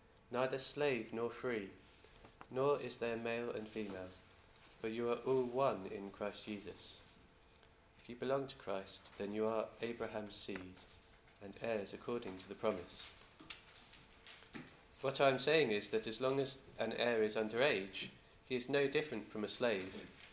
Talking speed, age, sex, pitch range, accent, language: 160 wpm, 40-59, male, 100-130 Hz, British, English